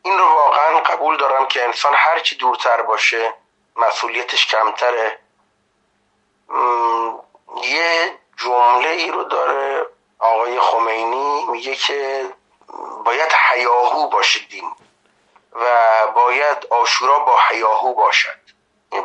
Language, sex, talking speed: Persian, male, 100 wpm